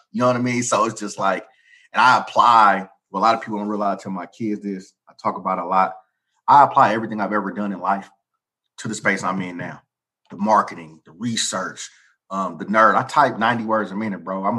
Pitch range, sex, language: 95-115 Hz, male, English